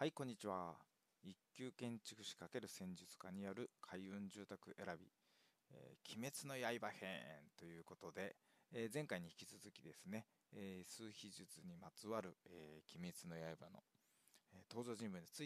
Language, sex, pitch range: Japanese, male, 90-135 Hz